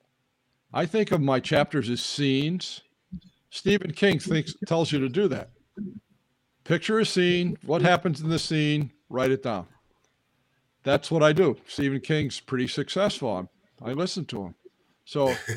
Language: English